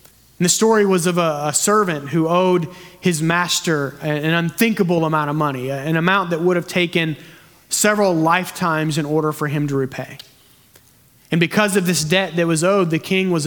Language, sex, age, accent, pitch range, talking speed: English, male, 30-49, American, 150-180 Hz, 185 wpm